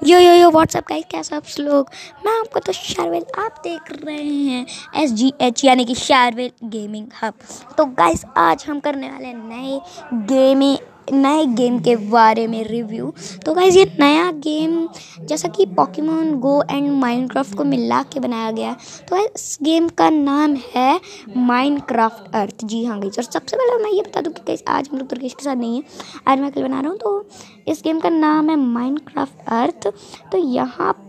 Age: 20-39